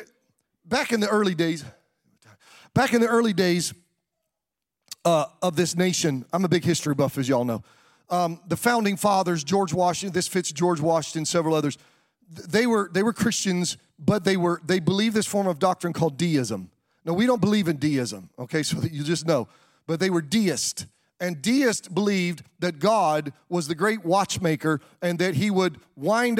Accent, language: American, English